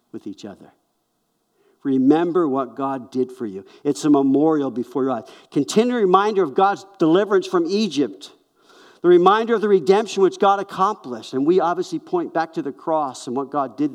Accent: American